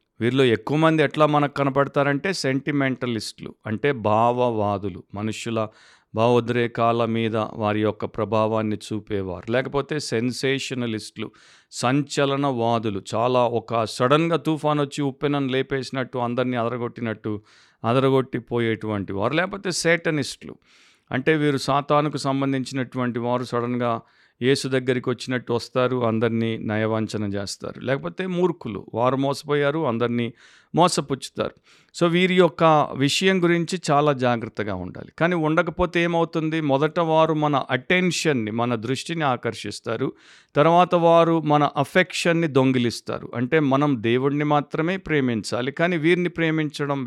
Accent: native